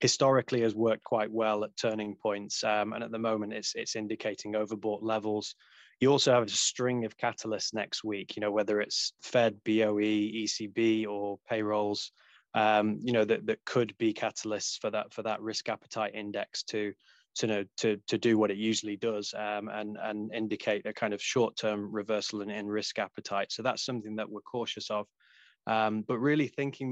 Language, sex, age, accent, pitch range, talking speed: English, male, 20-39, British, 105-115 Hz, 185 wpm